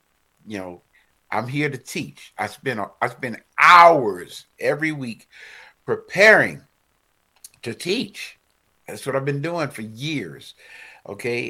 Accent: American